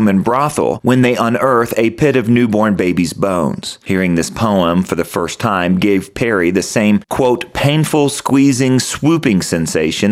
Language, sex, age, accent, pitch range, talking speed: English, male, 40-59, American, 95-130 Hz, 160 wpm